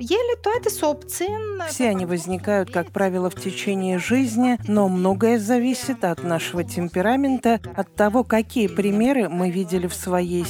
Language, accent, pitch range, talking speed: Russian, native, 175-225 Hz, 125 wpm